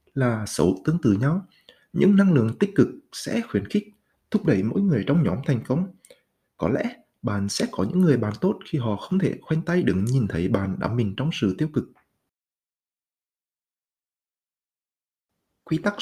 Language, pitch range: Vietnamese, 110-180 Hz